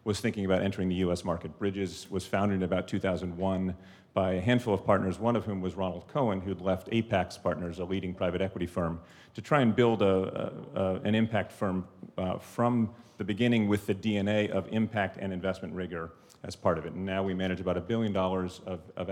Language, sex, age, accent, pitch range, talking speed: English, male, 40-59, American, 90-105 Hz, 205 wpm